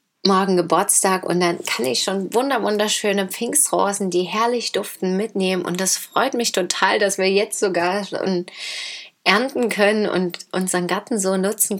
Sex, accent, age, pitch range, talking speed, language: female, German, 30-49, 175-210 Hz, 155 wpm, German